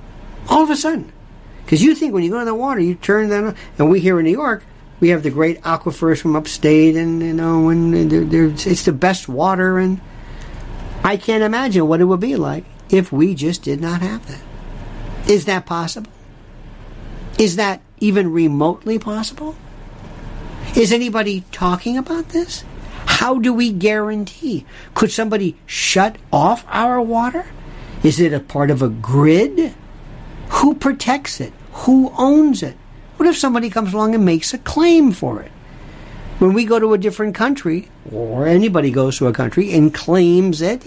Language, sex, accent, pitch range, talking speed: English, male, American, 160-235 Hz, 175 wpm